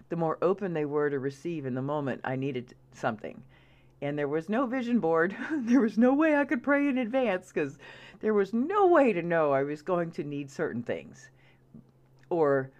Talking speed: 200 wpm